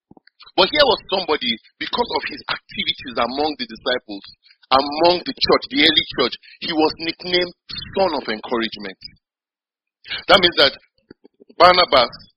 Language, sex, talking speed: English, male, 130 wpm